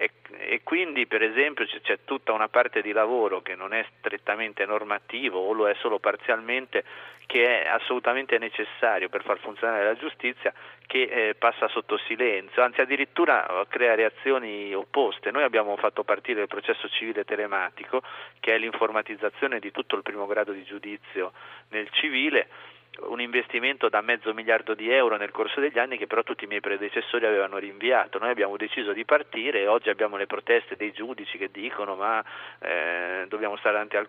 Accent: native